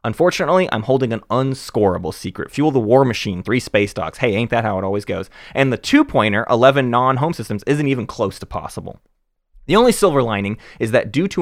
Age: 20-39